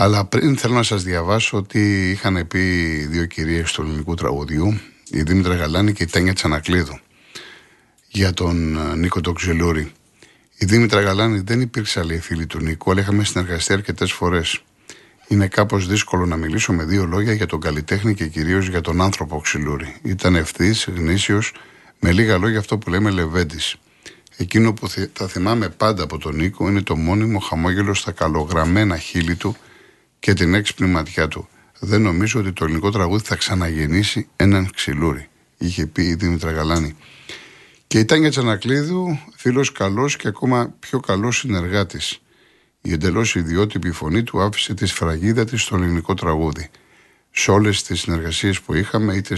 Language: Greek